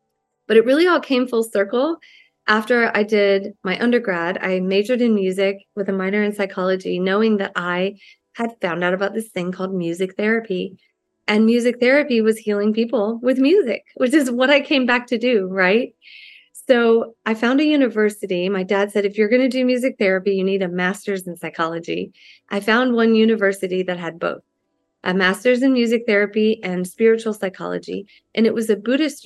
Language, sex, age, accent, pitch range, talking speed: English, female, 30-49, American, 190-230 Hz, 185 wpm